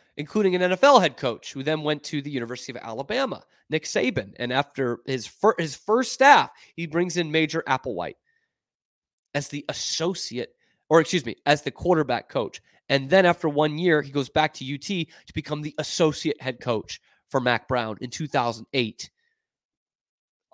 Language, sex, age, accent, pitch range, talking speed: English, male, 30-49, American, 130-180 Hz, 170 wpm